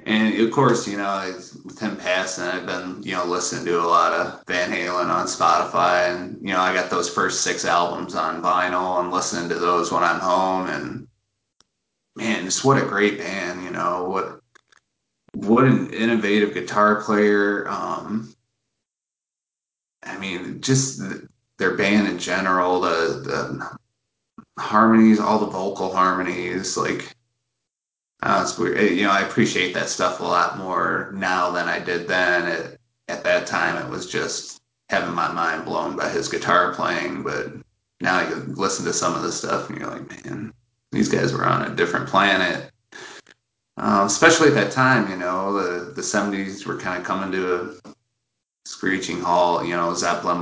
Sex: male